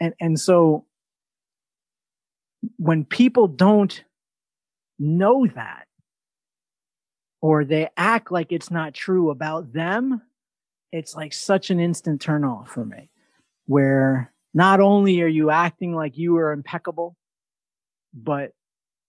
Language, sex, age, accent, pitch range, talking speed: English, male, 30-49, American, 150-200 Hz, 115 wpm